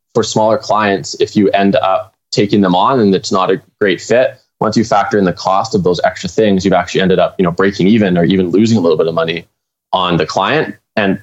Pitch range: 95-115 Hz